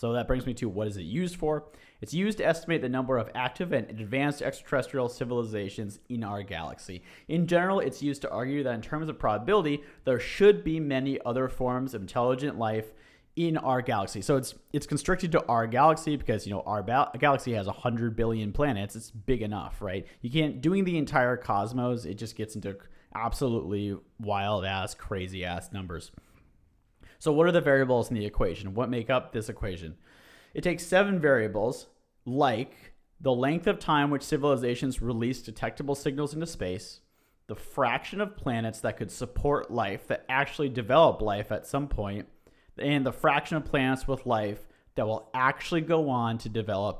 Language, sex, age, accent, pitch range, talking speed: English, male, 30-49, American, 110-145 Hz, 185 wpm